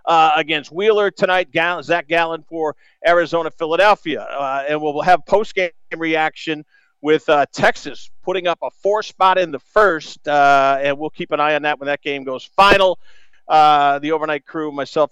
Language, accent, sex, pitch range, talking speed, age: English, American, male, 155-210 Hz, 175 wpm, 50-69